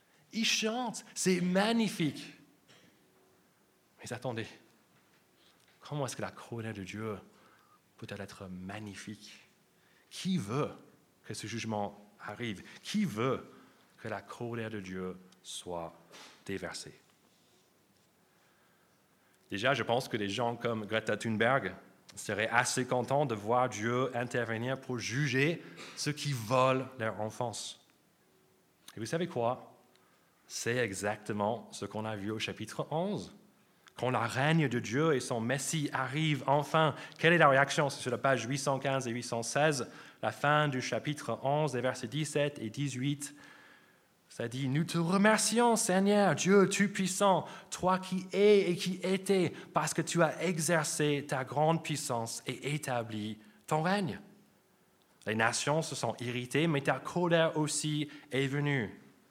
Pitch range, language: 115-160 Hz, French